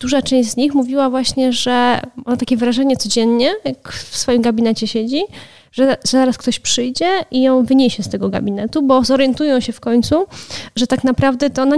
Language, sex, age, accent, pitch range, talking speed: Polish, female, 20-39, native, 235-270 Hz, 185 wpm